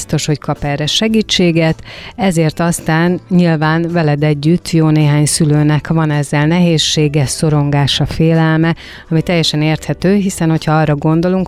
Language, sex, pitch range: Hungarian, female, 145-170 Hz